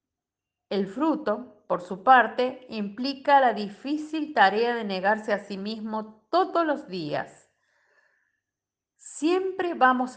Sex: female